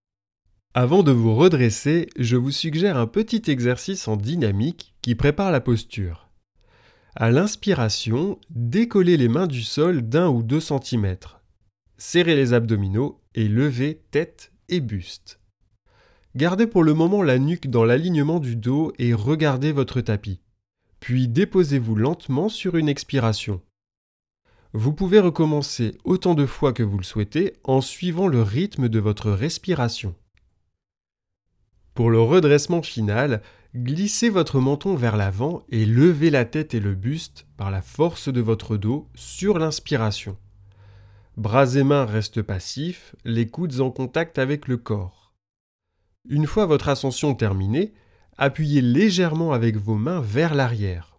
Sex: male